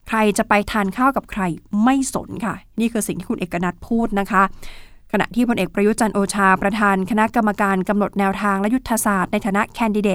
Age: 20-39